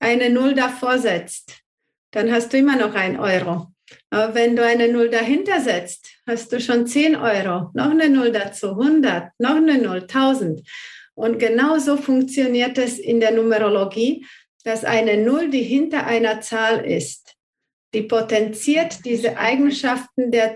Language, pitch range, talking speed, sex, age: German, 220-260 Hz, 150 wpm, female, 50-69